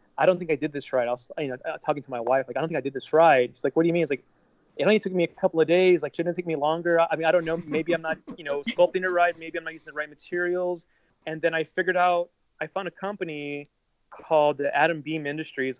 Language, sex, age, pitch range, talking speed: English, male, 30-49, 130-165 Hz, 300 wpm